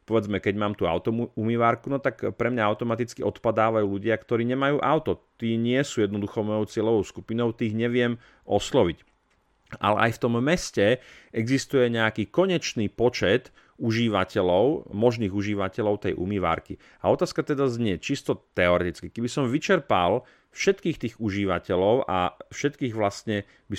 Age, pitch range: 40-59, 100-120 Hz